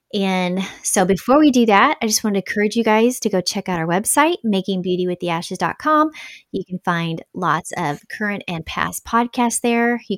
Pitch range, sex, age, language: 180-235 Hz, female, 30-49, English